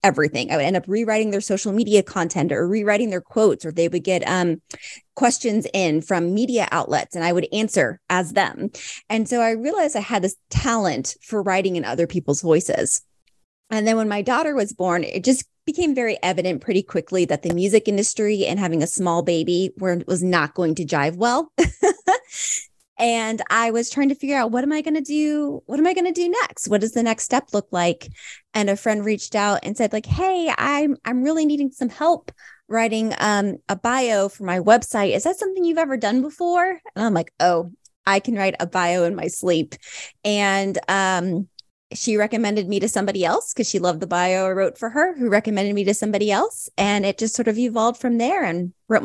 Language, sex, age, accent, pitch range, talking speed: English, female, 20-39, American, 180-240 Hz, 215 wpm